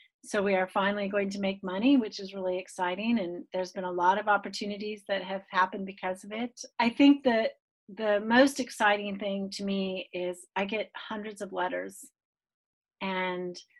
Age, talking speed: 40-59, 180 wpm